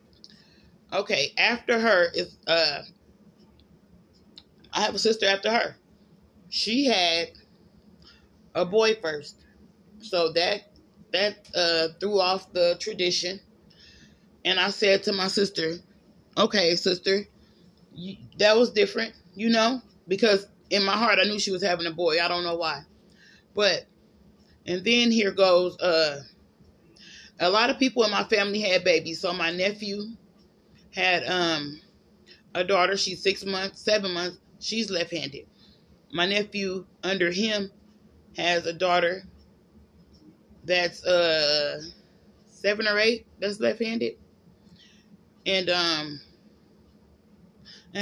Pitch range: 175-205 Hz